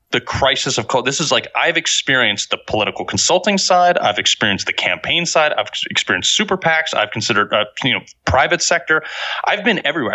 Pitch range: 105-155 Hz